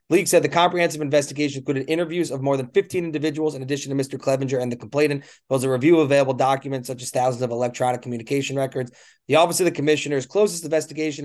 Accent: American